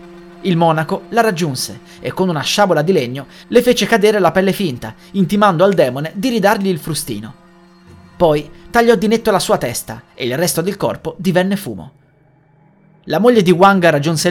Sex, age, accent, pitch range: male, 30-49, native, 140-195 Hz